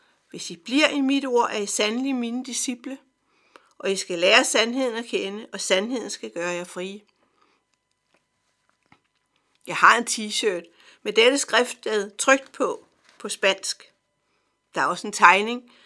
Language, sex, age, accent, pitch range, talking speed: Danish, female, 50-69, native, 195-255 Hz, 155 wpm